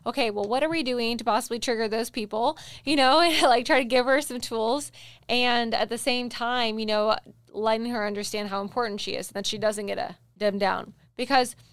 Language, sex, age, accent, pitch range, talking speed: English, female, 20-39, American, 210-250 Hz, 215 wpm